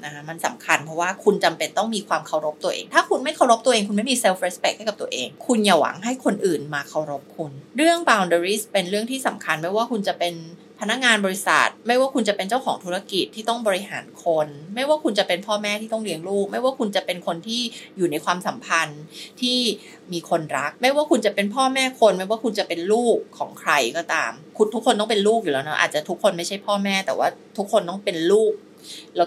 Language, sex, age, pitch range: Thai, female, 20-39, 170-230 Hz